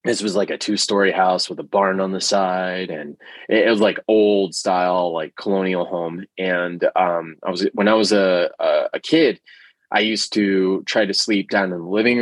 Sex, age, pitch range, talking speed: male, 20-39, 95-110 Hz, 195 wpm